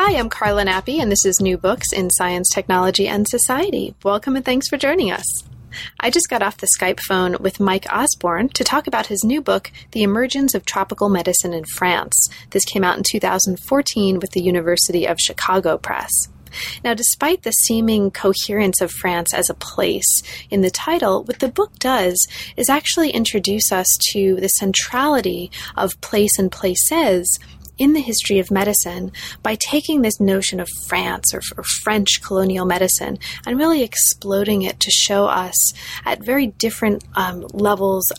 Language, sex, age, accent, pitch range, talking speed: English, female, 30-49, American, 185-235 Hz, 175 wpm